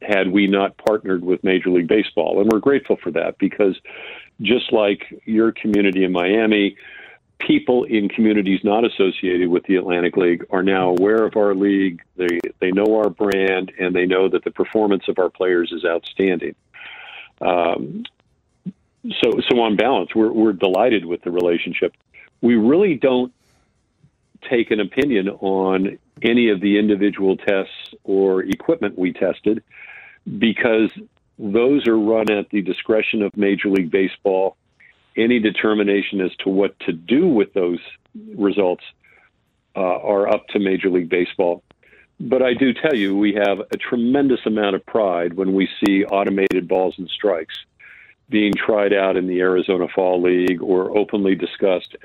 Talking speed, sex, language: 155 wpm, male, Spanish